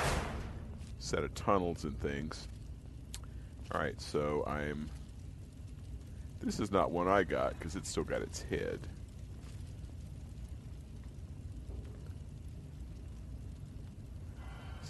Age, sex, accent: 50-69, male, American